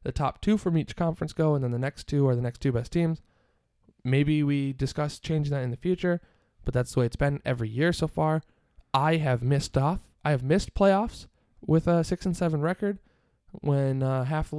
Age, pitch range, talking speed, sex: 20-39, 130-170 Hz, 220 wpm, male